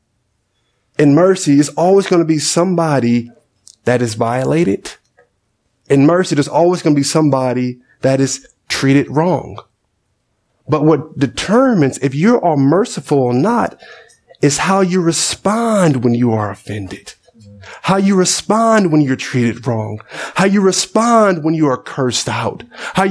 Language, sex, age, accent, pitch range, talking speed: English, male, 30-49, American, 130-215 Hz, 145 wpm